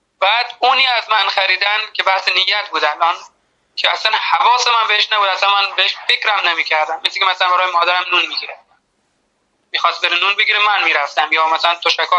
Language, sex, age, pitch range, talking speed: Persian, male, 30-49, 170-205 Hz, 195 wpm